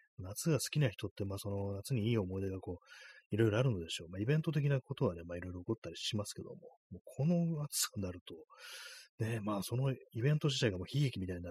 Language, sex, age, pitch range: Japanese, male, 30-49, 90-125 Hz